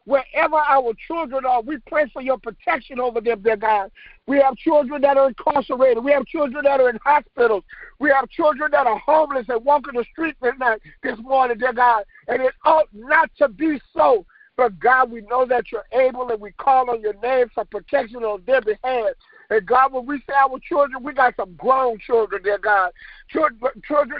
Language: English